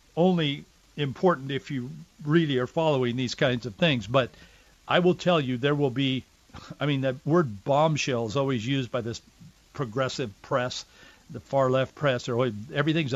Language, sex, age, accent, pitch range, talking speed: English, male, 50-69, American, 125-155 Hz, 165 wpm